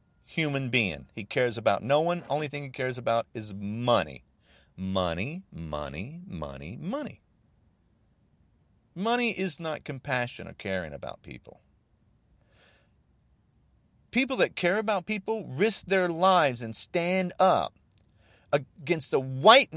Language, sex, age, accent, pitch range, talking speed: English, male, 40-59, American, 110-175 Hz, 120 wpm